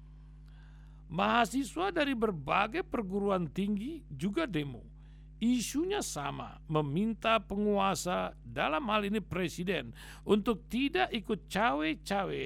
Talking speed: 90 wpm